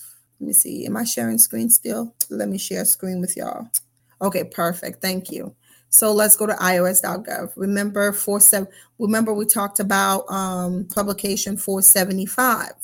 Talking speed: 160 wpm